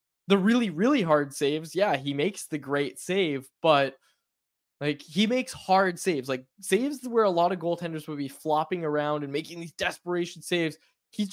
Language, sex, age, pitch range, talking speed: English, male, 20-39, 140-180 Hz, 180 wpm